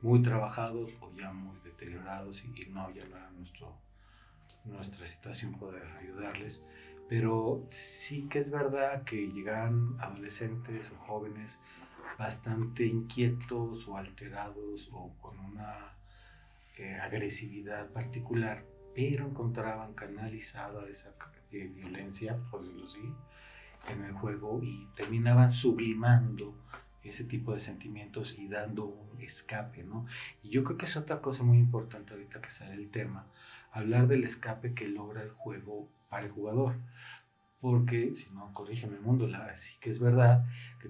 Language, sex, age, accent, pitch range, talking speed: Spanish, male, 40-59, Mexican, 100-125 Hz, 140 wpm